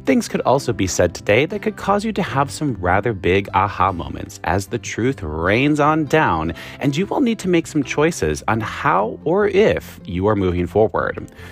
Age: 30-49